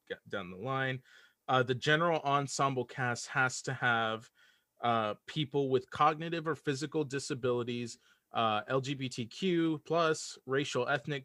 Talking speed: 125 wpm